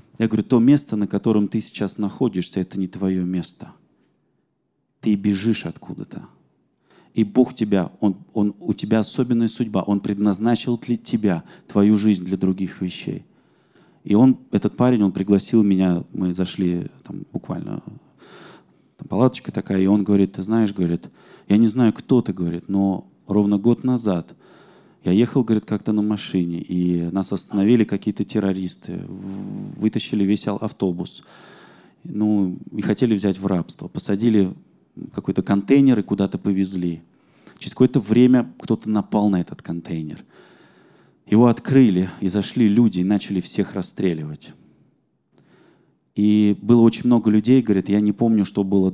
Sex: male